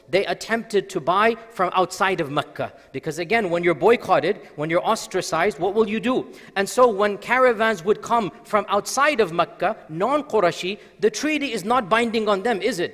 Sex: male